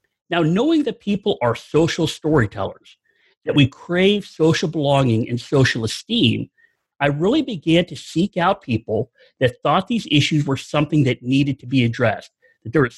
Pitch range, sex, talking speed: 125-185 Hz, male, 165 wpm